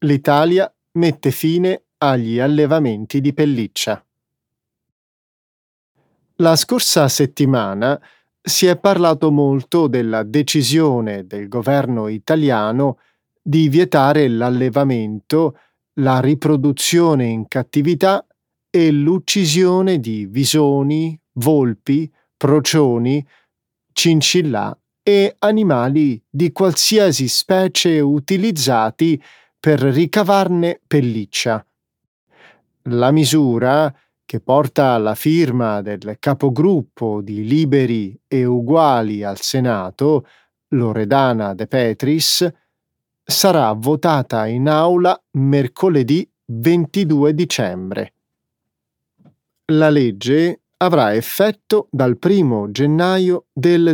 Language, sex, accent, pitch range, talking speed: Italian, male, native, 125-165 Hz, 80 wpm